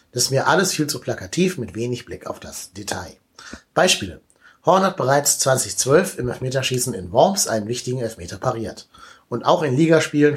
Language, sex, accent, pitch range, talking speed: German, male, German, 110-140 Hz, 175 wpm